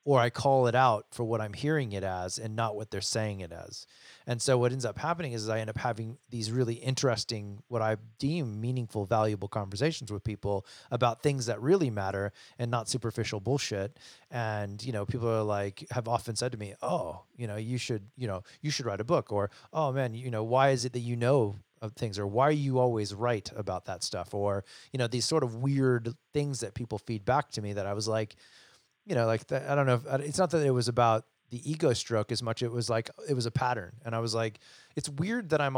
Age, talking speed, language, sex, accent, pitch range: 30-49, 245 wpm, English, male, American, 105-130 Hz